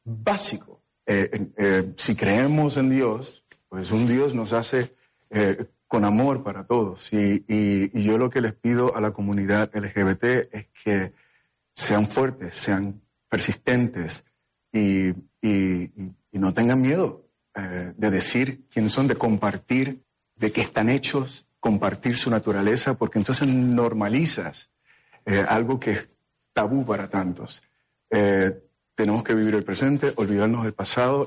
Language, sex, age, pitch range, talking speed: Spanish, male, 40-59, 105-130 Hz, 145 wpm